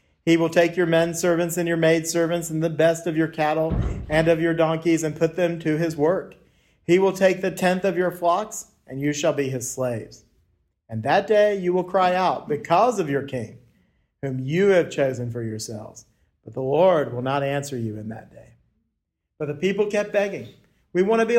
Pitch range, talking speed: 135-170 Hz, 215 wpm